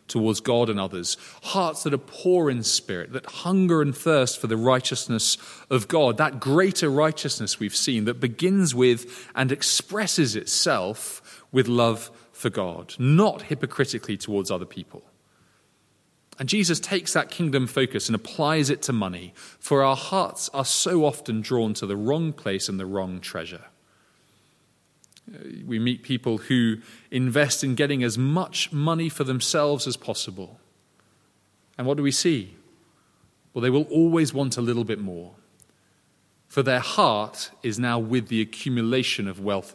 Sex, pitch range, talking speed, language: male, 110-140 Hz, 155 wpm, English